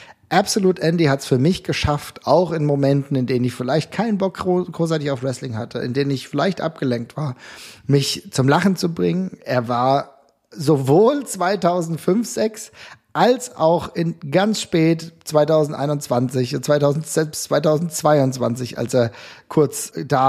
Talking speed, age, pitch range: 140 wpm, 40-59, 135-175 Hz